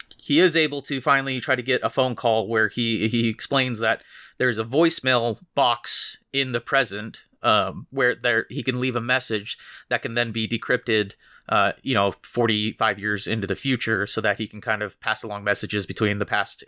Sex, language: male, English